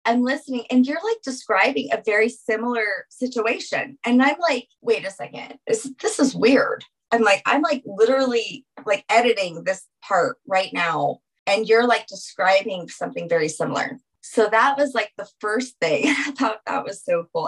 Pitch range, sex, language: 175-245 Hz, female, English